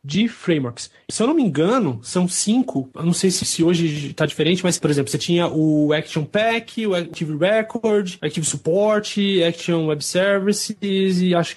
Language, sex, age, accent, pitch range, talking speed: English, male, 20-39, Brazilian, 155-200 Hz, 180 wpm